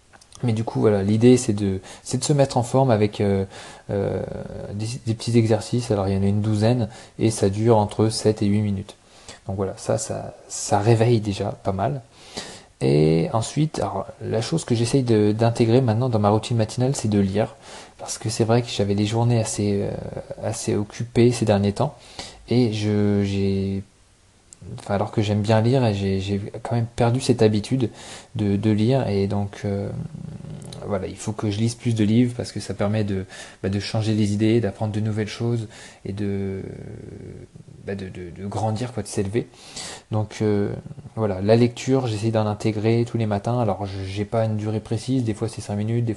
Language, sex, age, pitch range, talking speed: English, male, 20-39, 100-115 Hz, 200 wpm